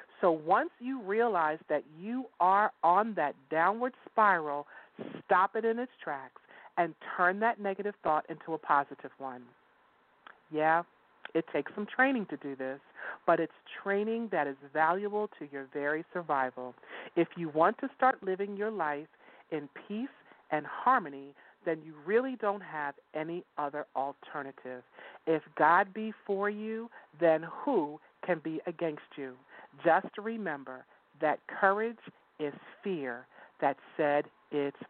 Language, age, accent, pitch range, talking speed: English, 40-59, American, 145-200 Hz, 145 wpm